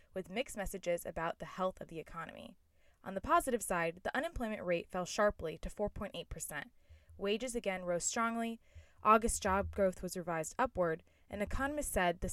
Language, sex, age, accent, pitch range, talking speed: English, female, 10-29, American, 160-215 Hz, 165 wpm